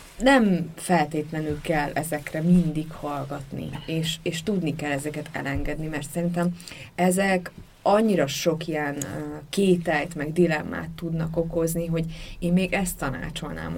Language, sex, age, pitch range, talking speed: Hungarian, female, 20-39, 165-205 Hz, 120 wpm